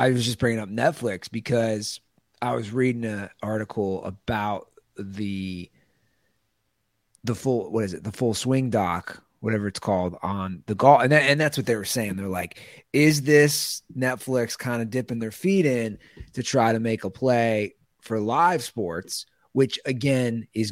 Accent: American